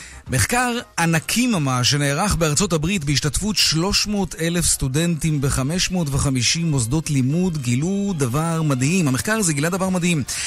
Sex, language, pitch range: male, Hebrew, 130-180 Hz